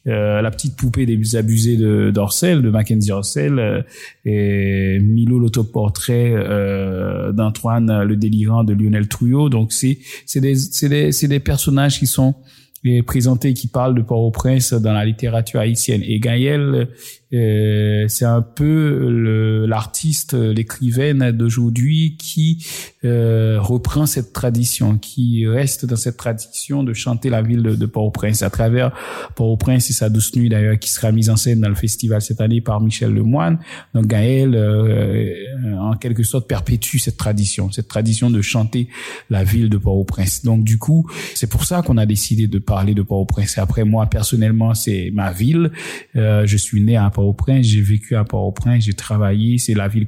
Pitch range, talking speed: 105-130 Hz, 170 wpm